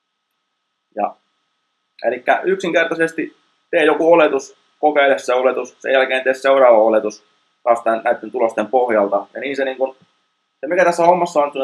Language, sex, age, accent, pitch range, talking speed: Finnish, male, 20-39, native, 115-145 Hz, 150 wpm